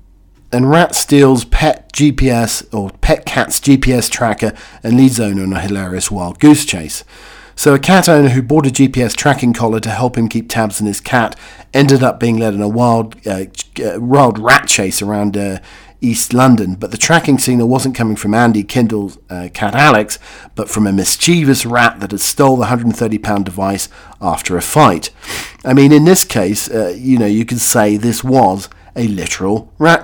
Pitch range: 105-130 Hz